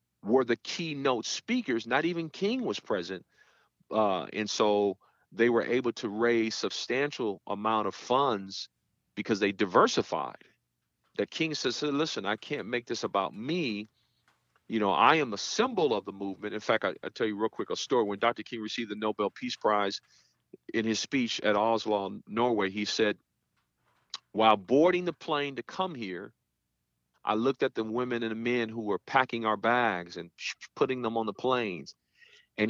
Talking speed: 175 wpm